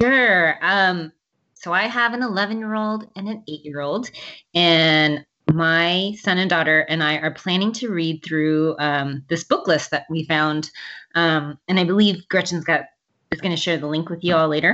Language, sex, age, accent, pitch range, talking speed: English, female, 20-39, American, 150-180 Hz, 200 wpm